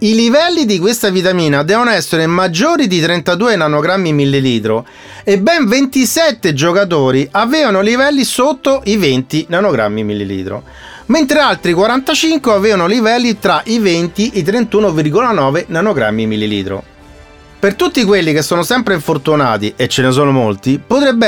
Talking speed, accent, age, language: 140 wpm, native, 30-49, Italian